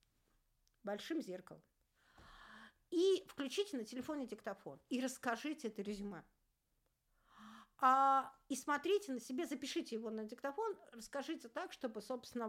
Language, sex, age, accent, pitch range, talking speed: Russian, female, 50-69, native, 250-350 Hz, 115 wpm